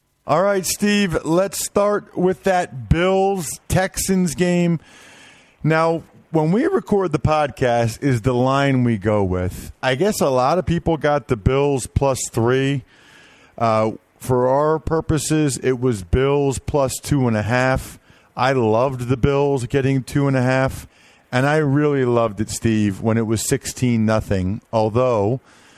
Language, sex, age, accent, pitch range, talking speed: English, male, 40-59, American, 115-145 Hz, 150 wpm